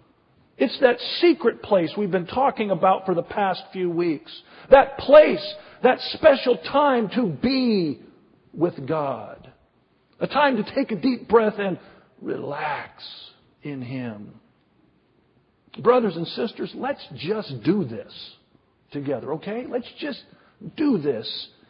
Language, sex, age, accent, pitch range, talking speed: English, male, 50-69, American, 215-285 Hz, 125 wpm